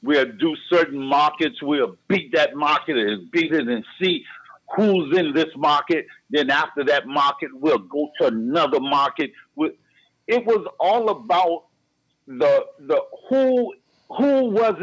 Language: English